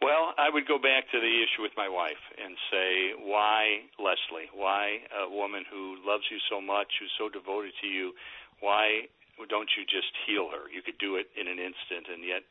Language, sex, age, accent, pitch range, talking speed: English, male, 50-69, American, 100-140 Hz, 205 wpm